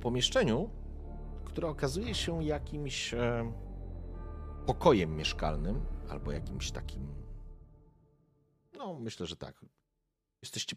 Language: Polish